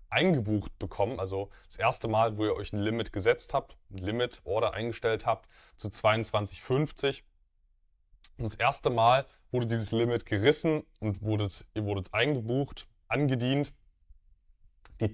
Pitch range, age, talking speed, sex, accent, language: 95-130 Hz, 20-39, 135 wpm, male, German, German